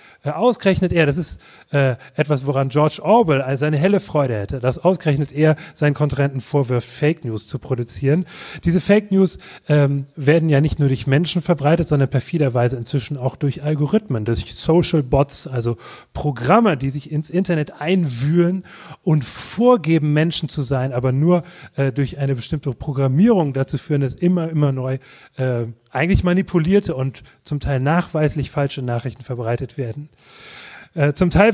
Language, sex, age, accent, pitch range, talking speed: German, male, 30-49, German, 135-165 Hz, 155 wpm